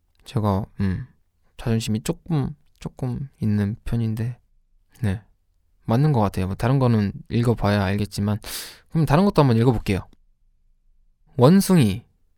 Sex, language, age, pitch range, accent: male, Korean, 20-39, 95-140 Hz, native